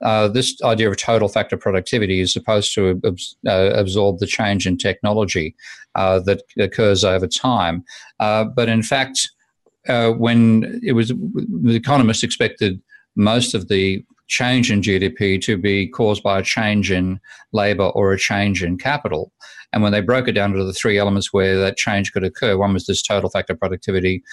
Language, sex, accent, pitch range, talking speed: English, male, Australian, 95-110 Hz, 185 wpm